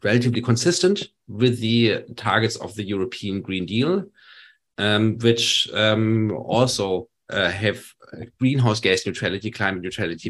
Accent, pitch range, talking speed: German, 100-120 Hz, 120 wpm